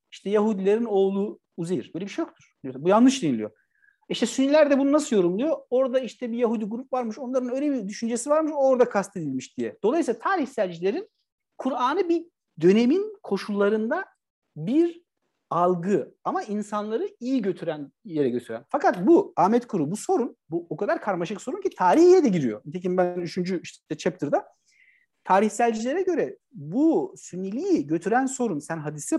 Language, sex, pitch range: Turkish, male, 165-265 Hz